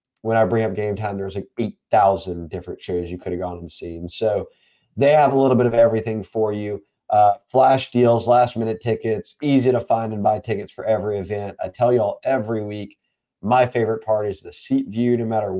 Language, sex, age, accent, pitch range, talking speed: English, male, 30-49, American, 100-125 Hz, 220 wpm